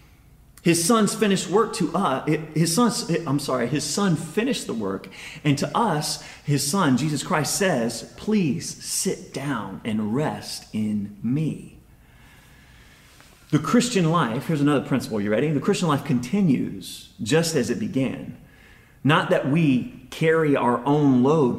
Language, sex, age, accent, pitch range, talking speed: English, male, 30-49, American, 125-175 Hz, 145 wpm